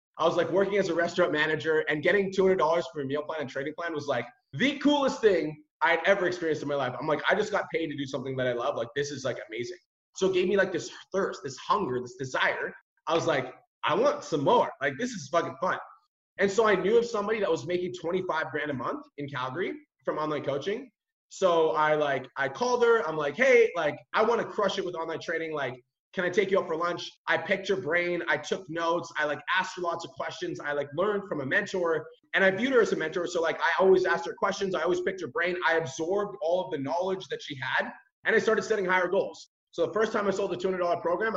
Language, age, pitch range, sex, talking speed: English, 20-39, 155-200 Hz, male, 255 wpm